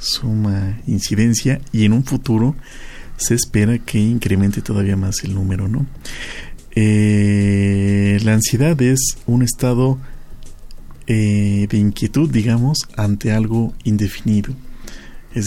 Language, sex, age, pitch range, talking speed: Spanish, male, 50-69, 105-120 Hz, 115 wpm